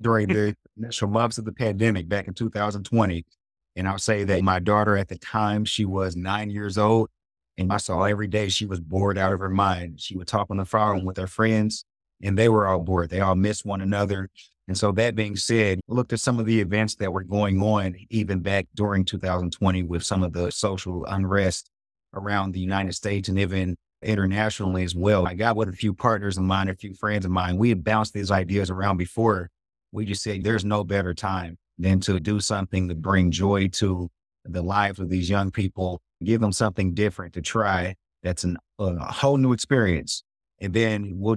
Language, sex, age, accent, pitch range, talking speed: English, male, 30-49, American, 90-105 Hz, 210 wpm